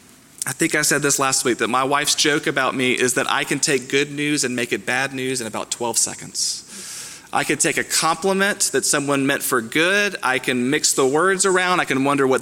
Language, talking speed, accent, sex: English, 235 wpm, American, male